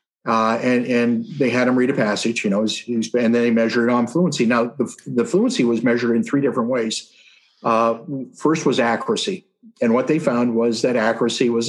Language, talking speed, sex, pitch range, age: English, 200 wpm, male, 115-140 Hz, 50-69